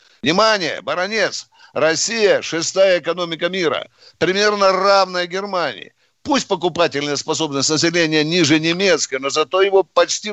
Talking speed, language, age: 115 wpm, Russian, 60-79